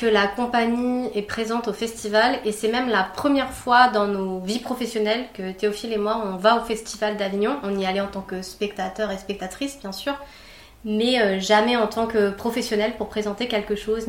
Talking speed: 200 wpm